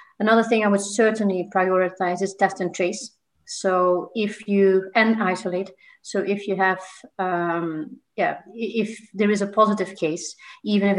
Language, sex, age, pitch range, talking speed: Swedish, female, 30-49, 175-215 Hz, 160 wpm